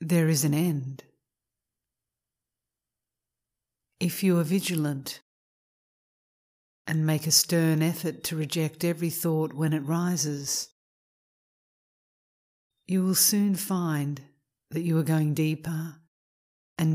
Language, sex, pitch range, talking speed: English, female, 110-165 Hz, 105 wpm